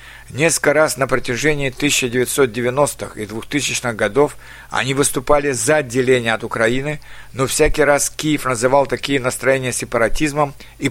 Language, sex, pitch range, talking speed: Russian, male, 120-145 Hz, 125 wpm